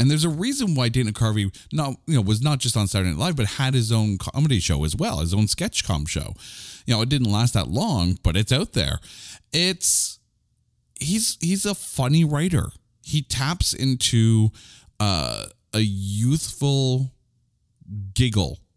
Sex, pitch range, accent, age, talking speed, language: male, 95-135 Hz, American, 40-59, 175 wpm, English